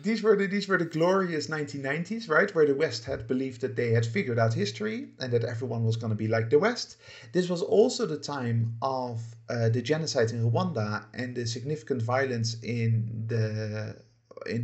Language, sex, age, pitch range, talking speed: English, male, 50-69, 115-145 Hz, 180 wpm